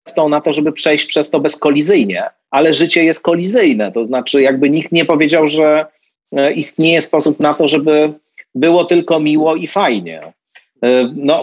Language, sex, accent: Polish, male, native